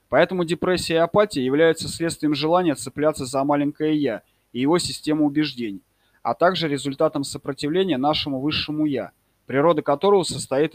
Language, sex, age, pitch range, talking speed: Russian, male, 20-39, 130-160 Hz, 140 wpm